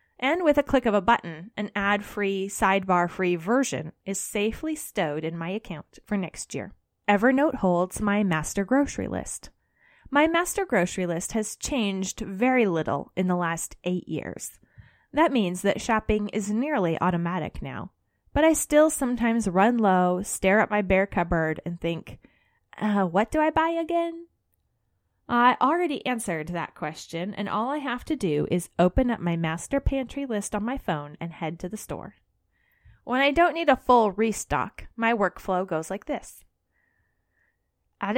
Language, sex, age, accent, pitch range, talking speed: English, female, 20-39, American, 180-250 Hz, 165 wpm